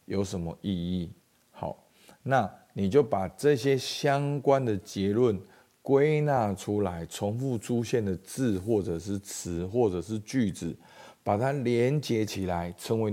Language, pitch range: Chinese, 90-125 Hz